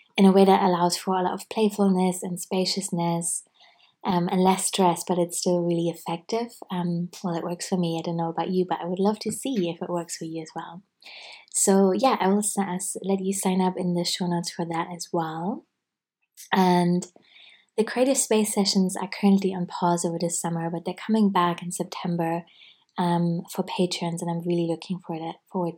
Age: 20-39